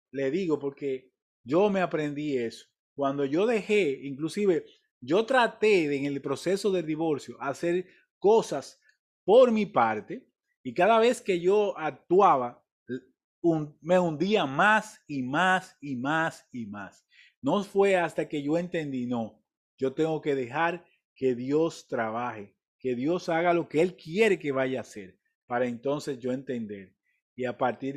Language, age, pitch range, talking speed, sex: Spanish, 30-49, 130-180 Hz, 155 wpm, male